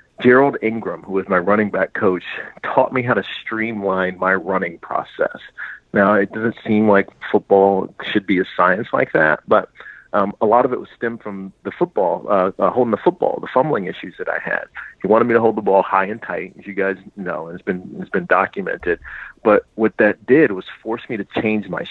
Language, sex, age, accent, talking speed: English, male, 40-59, American, 220 wpm